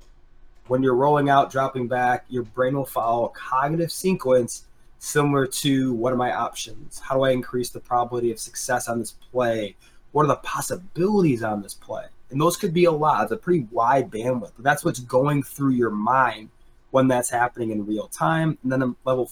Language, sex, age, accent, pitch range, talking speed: English, male, 20-39, American, 115-135 Hz, 195 wpm